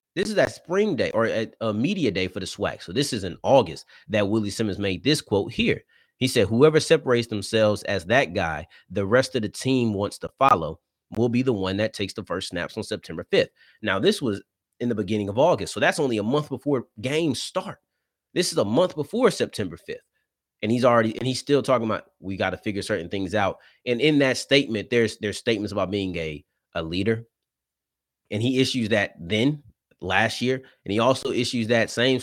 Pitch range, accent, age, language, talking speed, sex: 100-130 Hz, American, 30-49, English, 215 wpm, male